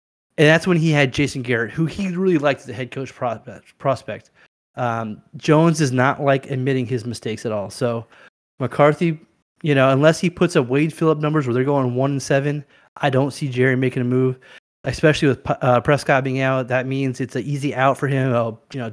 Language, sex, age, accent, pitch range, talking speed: English, male, 20-39, American, 125-150 Hz, 205 wpm